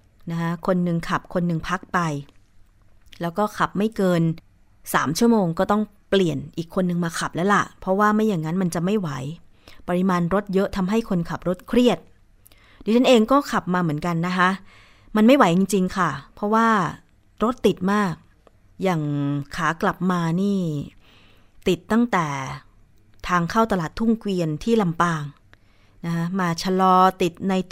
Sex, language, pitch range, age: female, Thai, 160-205 Hz, 20-39